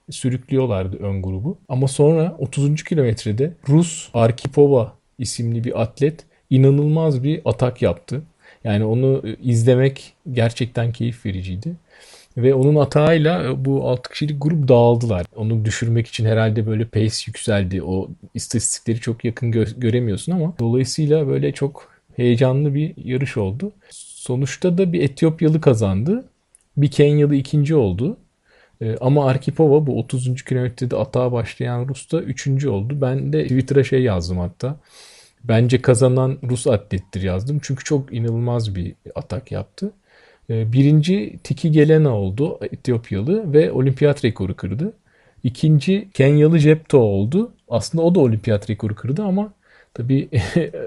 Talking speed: 125 wpm